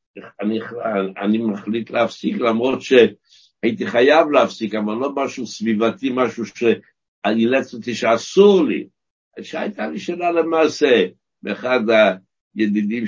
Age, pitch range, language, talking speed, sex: 60-79, 95-135 Hz, Hebrew, 105 wpm, male